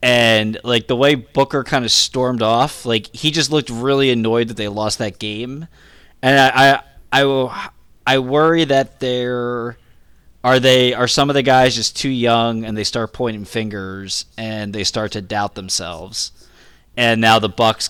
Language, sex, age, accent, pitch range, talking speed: English, male, 20-39, American, 105-125 Hz, 180 wpm